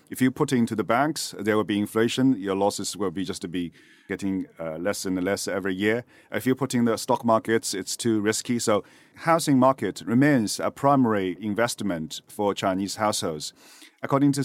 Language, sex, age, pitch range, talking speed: English, male, 40-59, 100-130 Hz, 190 wpm